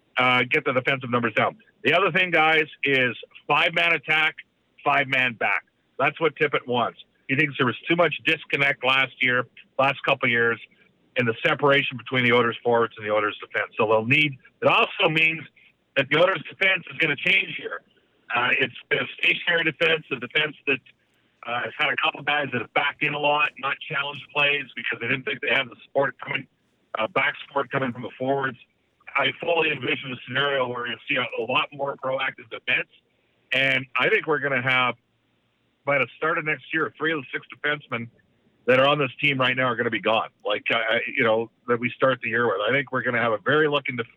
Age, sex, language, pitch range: 50-69, male, English, 125-155 Hz